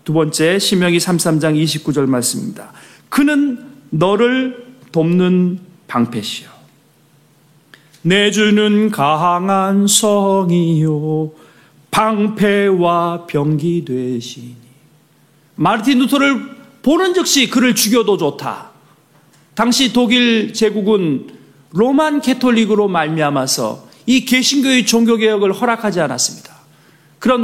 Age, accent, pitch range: 40-59, native, 170-260 Hz